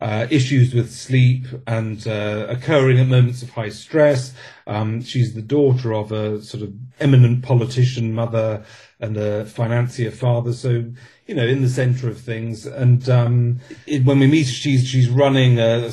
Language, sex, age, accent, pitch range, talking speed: English, male, 40-59, British, 110-130 Hz, 175 wpm